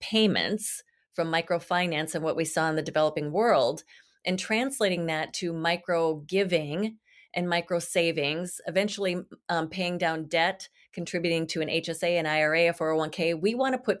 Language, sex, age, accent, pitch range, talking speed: English, female, 30-49, American, 160-195 Hz, 160 wpm